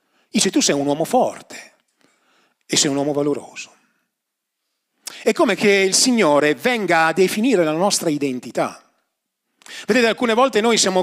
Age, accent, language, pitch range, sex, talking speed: 40-59, native, Italian, 160-225 Hz, male, 145 wpm